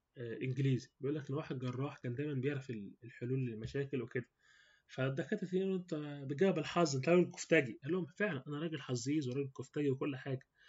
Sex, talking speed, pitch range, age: male, 165 wpm, 130-175 Hz, 20-39